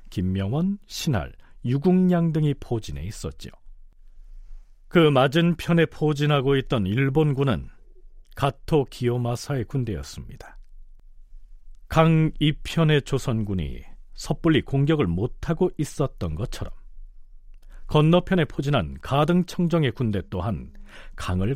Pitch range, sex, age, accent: 100-160 Hz, male, 40-59, native